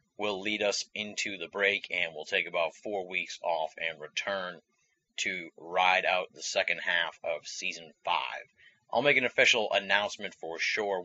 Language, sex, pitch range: English, male, 95-110 Hz